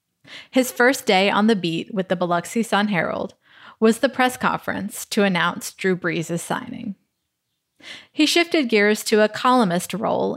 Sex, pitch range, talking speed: female, 190-245 Hz, 150 wpm